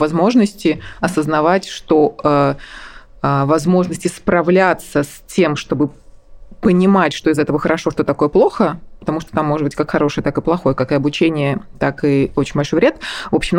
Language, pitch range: Russian, 140-175 Hz